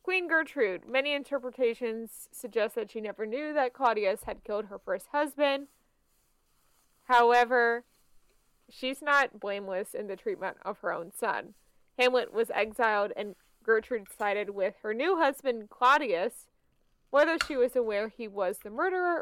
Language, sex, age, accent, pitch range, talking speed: English, female, 20-39, American, 215-275 Hz, 145 wpm